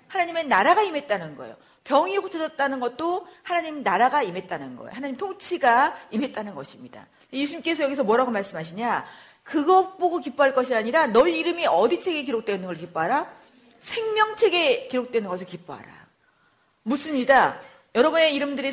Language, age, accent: Korean, 40-59, native